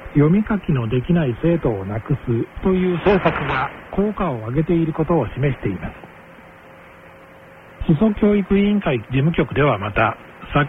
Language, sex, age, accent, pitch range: Korean, male, 60-79, Japanese, 135-190 Hz